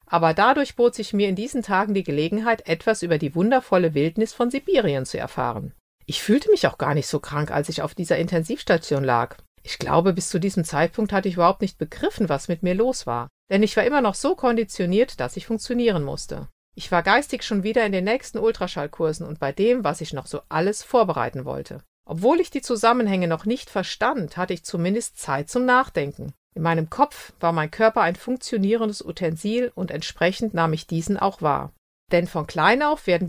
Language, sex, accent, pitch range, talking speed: German, female, German, 165-230 Hz, 205 wpm